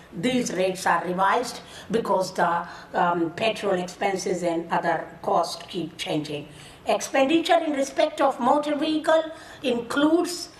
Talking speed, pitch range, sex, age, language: 120 wpm, 205-275 Hz, female, 60-79, English